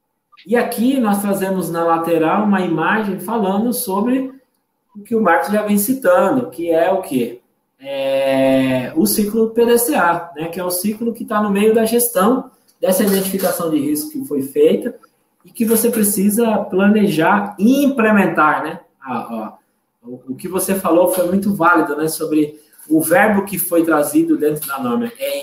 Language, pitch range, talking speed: Portuguese, 170-225 Hz, 160 wpm